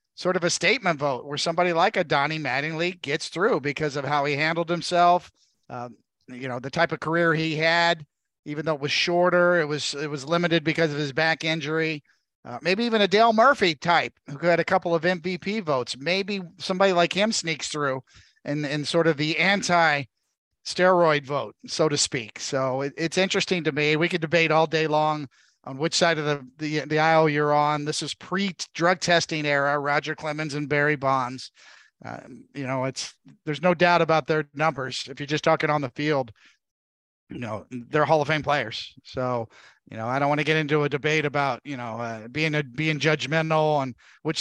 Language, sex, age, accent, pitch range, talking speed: English, male, 50-69, American, 145-170 Hz, 205 wpm